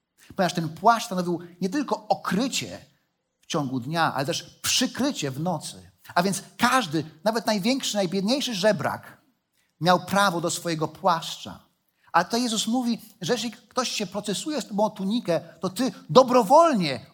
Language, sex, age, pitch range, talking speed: Polish, male, 40-59, 165-220 Hz, 150 wpm